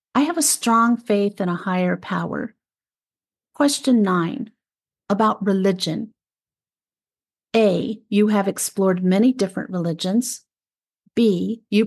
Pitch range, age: 200-245 Hz, 50-69